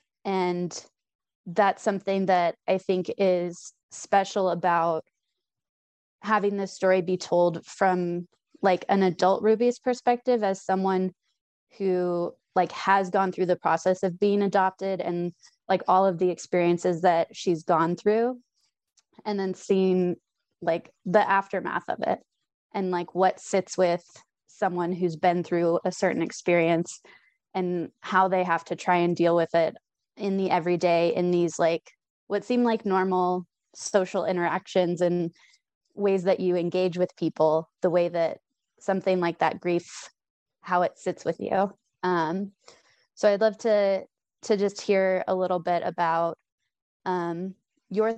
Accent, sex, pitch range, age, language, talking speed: American, female, 175-195 Hz, 20-39, English, 145 wpm